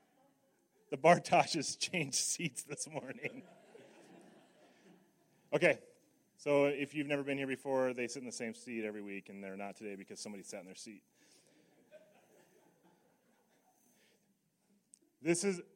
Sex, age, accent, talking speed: male, 30-49, American, 130 wpm